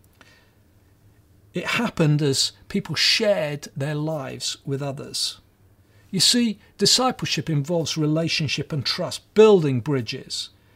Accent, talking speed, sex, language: British, 100 wpm, male, English